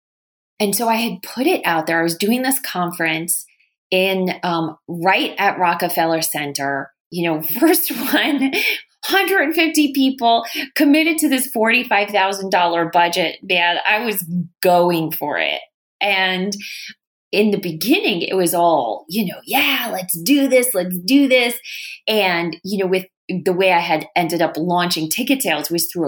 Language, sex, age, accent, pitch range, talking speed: English, female, 20-39, American, 170-230 Hz, 155 wpm